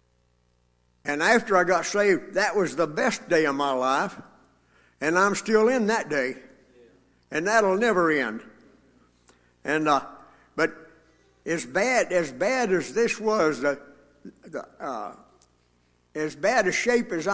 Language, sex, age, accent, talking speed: English, male, 60-79, American, 140 wpm